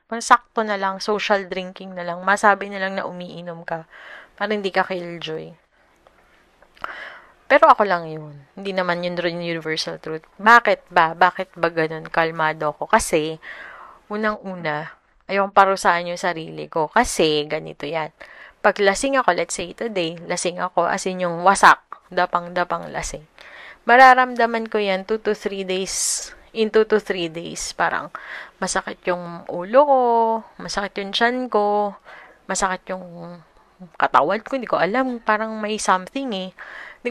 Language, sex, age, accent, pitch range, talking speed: Filipino, female, 20-39, native, 175-215 Hz, 150 wpm